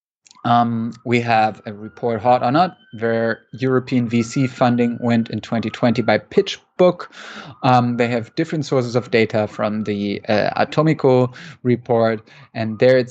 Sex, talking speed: male, 140 wpm